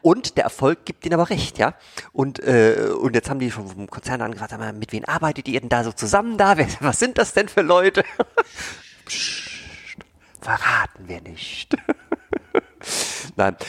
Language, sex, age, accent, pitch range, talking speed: German, male, 40-59, German, 100-140 Hz, 165 wpm